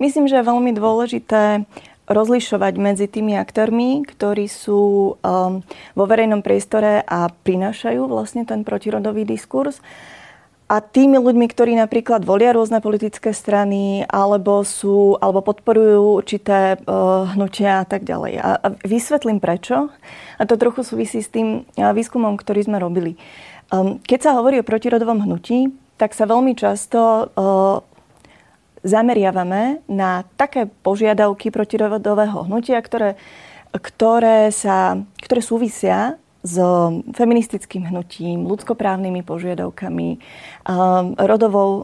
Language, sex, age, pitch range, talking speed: Slovak, female, 30-49, 195-230 Hz, 120 wpm